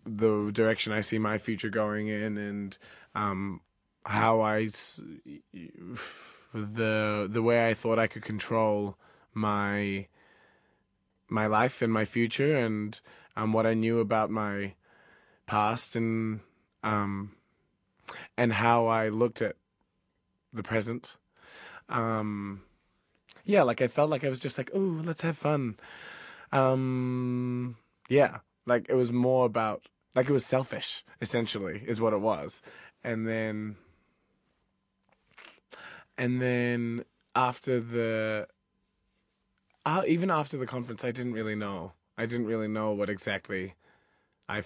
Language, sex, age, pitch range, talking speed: English, male, 20-39, 100-120 Hz, 130 wpm